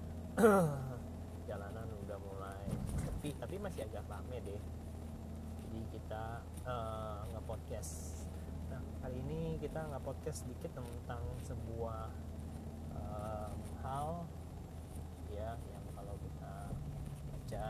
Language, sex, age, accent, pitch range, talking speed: Indonesian, male, 30-49, native, 100-130 Hz, 100 wpm